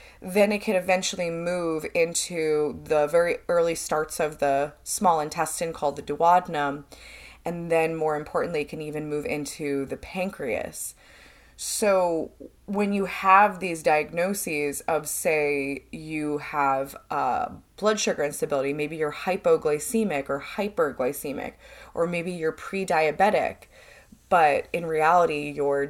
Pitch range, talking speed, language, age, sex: 145-175 Hz, 125 wpm, English, 20-39, female